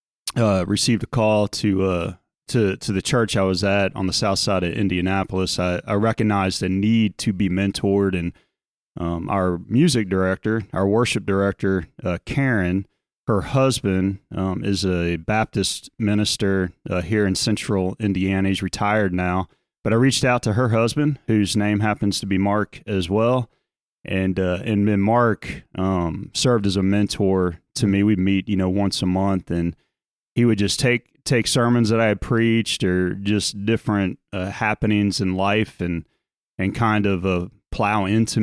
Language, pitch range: English, 95-110 Hz